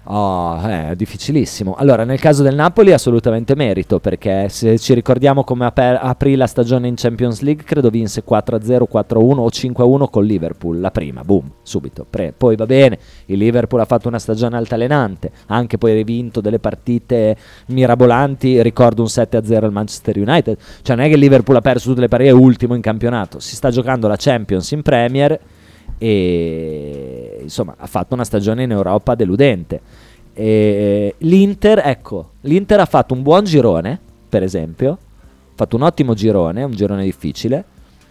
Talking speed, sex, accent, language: 170 wpm, male, native, Italian